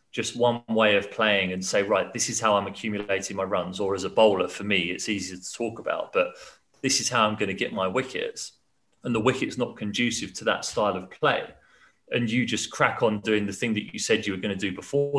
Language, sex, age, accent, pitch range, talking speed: English, male, 30-49, British, 100-120 Hz, 250 wpm